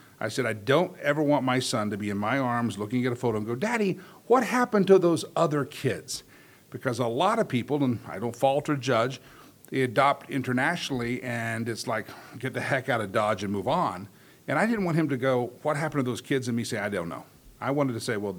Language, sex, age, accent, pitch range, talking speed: English, male, 50-69, American, 115-145 Hz, 245 wpm